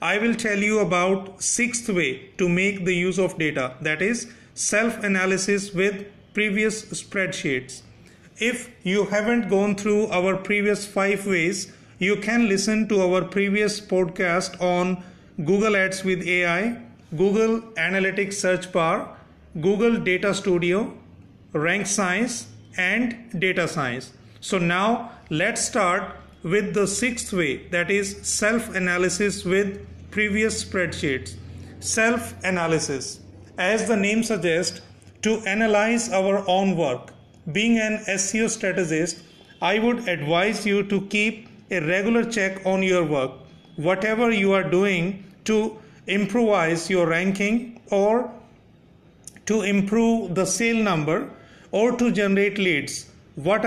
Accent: Indian